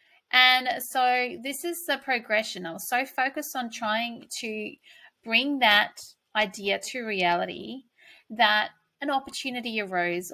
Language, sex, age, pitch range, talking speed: English, female, 30-49, 200-255 Hz, 130 wpm